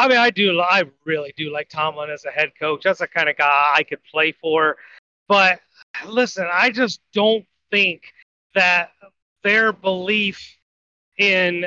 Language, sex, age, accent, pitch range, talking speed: English, male, 30-49, American, 180-215 Hz, 165 wpm